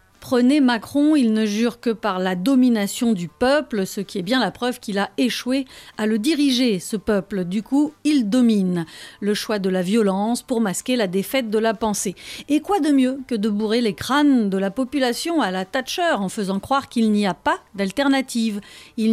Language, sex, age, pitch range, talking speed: French, female, 40-59, 200-265 Hz, 205 wpm